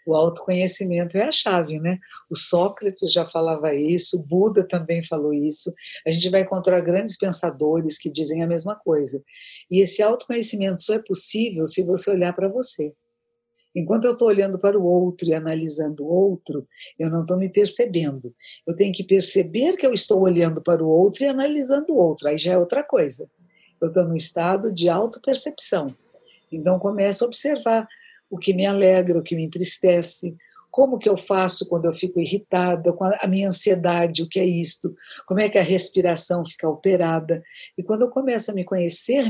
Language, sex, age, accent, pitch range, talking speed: Portuguese, female, 50-69, Brazilian, 175-215 Hz, 185 wpm